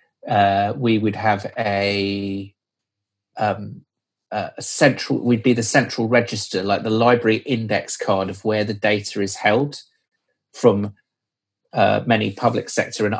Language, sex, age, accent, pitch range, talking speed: English, male, 30-49, British, 100-125 Hz, 135 wpm